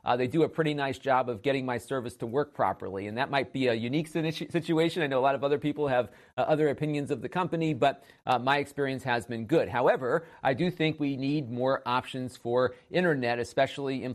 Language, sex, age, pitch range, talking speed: English, male, 40-59, 120-145 Hz, 230 wpm